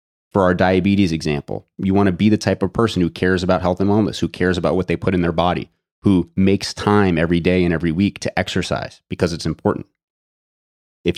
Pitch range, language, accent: 85-100 Hz, English, American